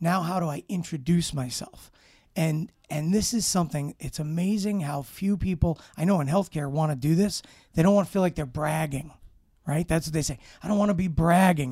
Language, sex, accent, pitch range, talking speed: English, male, American, 140-175 Hz, 220 wpm